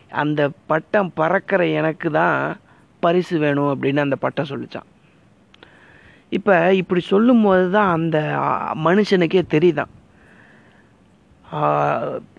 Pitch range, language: 150-180 Hz, Tamil